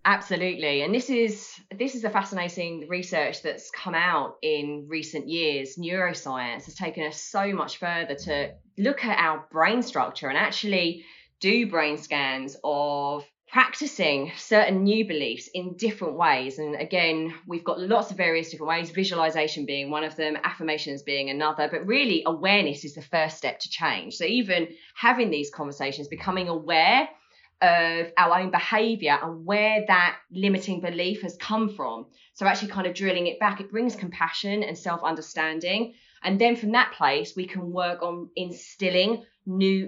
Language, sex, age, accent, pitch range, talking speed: English, female, 20-39, British, 160-205 Hz, 165 wpm